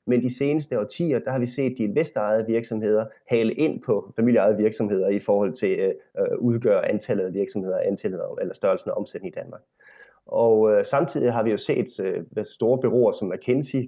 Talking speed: 195 wpm